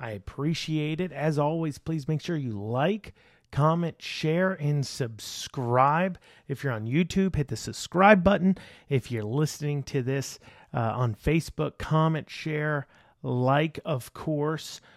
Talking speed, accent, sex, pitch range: 140 wpm, American, male, 125-160 Hz